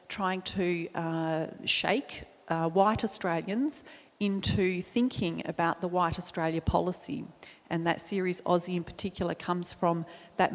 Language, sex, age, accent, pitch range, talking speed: English, female, 30-49, Australian, 170-200 Hz, 130 wpm